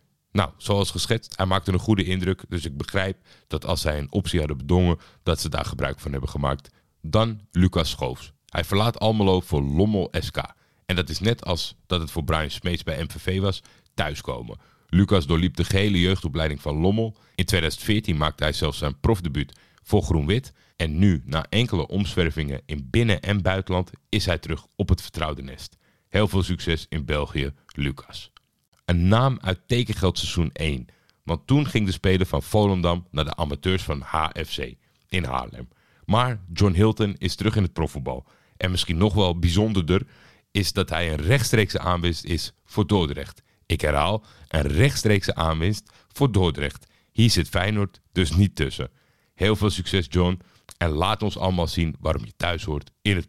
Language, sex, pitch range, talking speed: Dutch, male, 80-105 Hz, 175 wpm